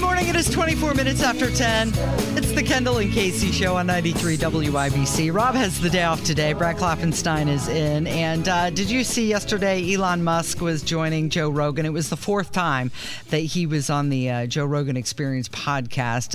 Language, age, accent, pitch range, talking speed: English, 40-59, American, 125-165 Hz, 200 wpm